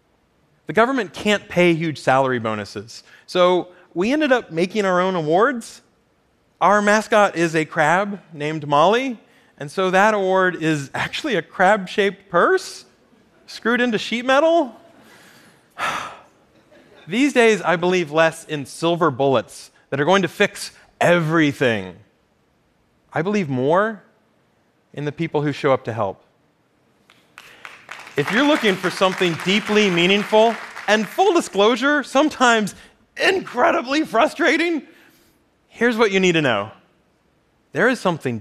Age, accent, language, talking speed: 30-49, American, Spanish, 130 wpm